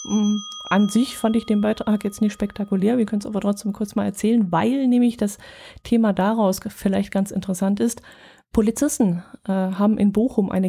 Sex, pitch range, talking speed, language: female, 190-215 Hz, 180 wpm, German